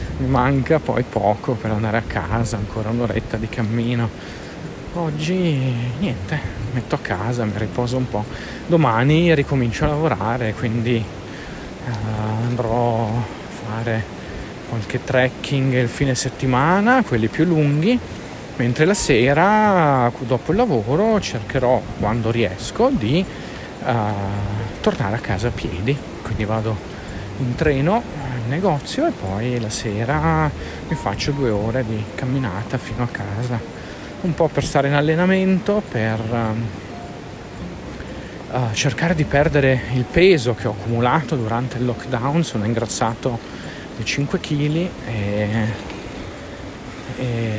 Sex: male